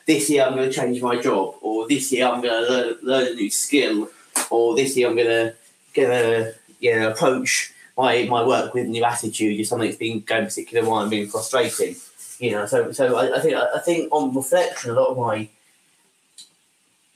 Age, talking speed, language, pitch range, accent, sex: 20-39, 200 wpm, English, 110-135 Hz, British, male